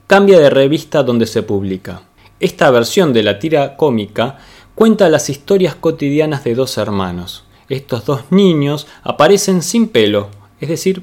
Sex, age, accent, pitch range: male, 20-39, Argentinian, 115-170 Hz